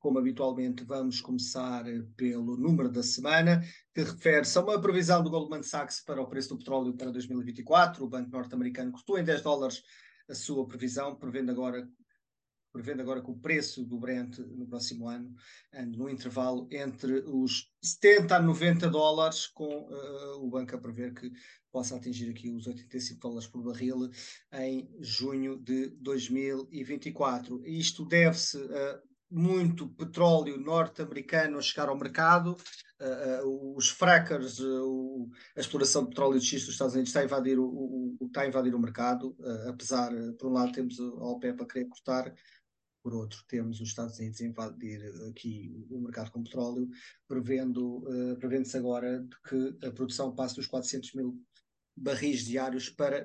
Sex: male